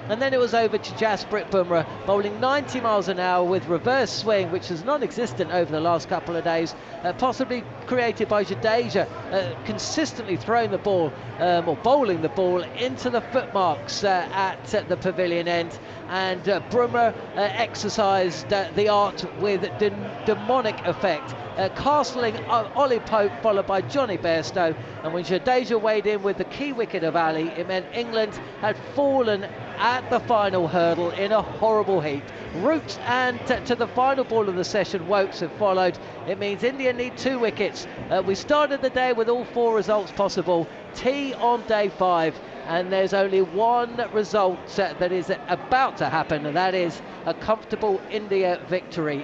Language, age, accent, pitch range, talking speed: English, 40-59, British, 175-230 Hz, 175 wpm